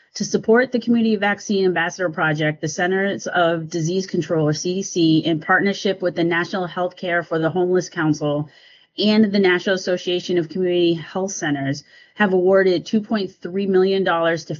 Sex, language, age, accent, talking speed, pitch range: female, English, 30-49, American, 150 wpm, 165-200 Hz